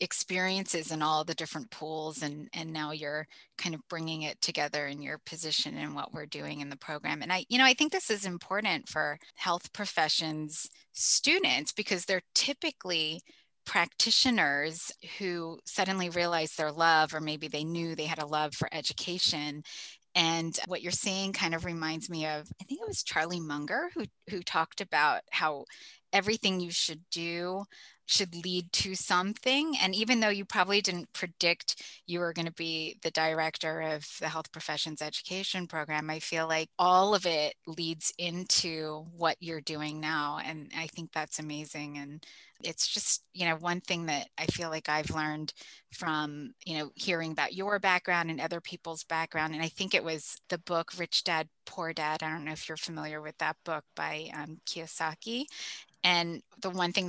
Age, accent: 20-39, American